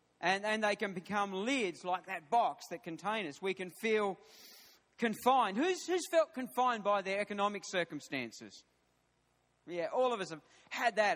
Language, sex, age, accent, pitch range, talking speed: English, male, 40-59, Australian, 205-250 Hz, 165 wpm